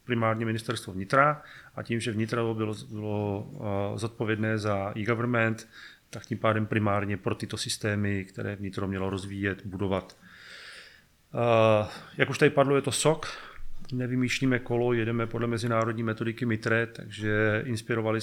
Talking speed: 140 wpm